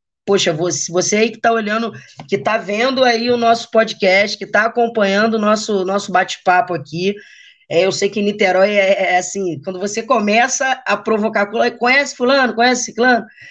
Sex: female